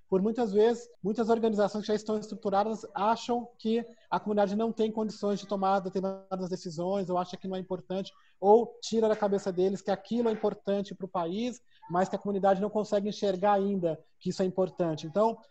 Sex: male